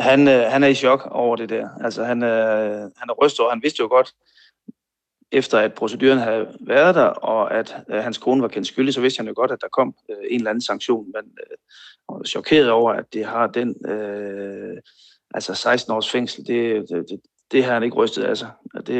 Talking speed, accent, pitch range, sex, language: 210 wpm, native, 115-130 Hz, male, Danish